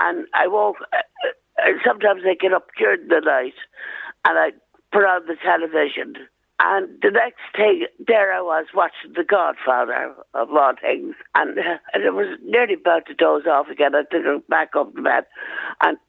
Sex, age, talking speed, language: female, 60-79, 180 wpm, English